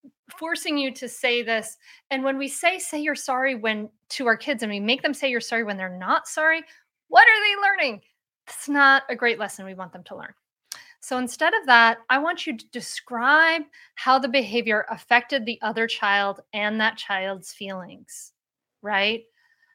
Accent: American